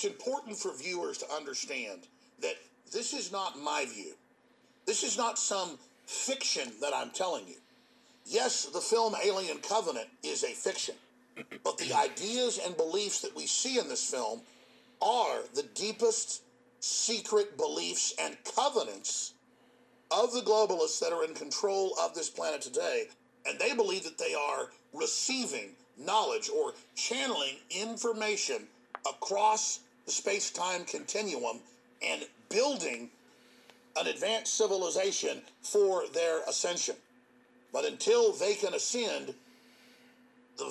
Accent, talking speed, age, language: American, 130 wpm, 50-69, English